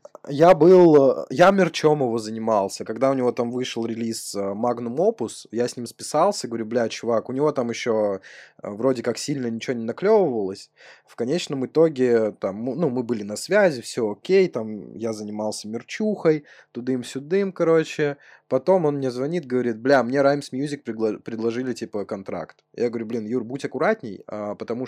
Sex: male